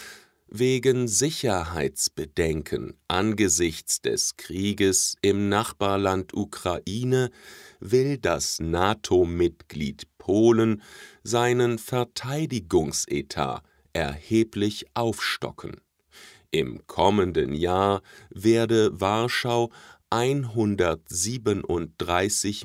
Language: English